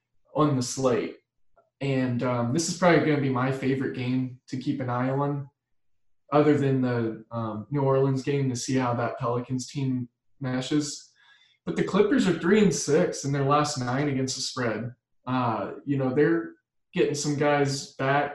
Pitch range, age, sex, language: 125-145 Hz, 20-39, male, English